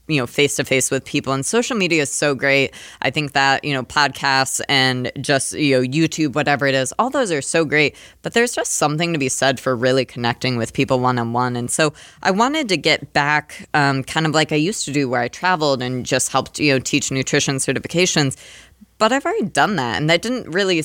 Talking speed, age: 235 wpm, 20-39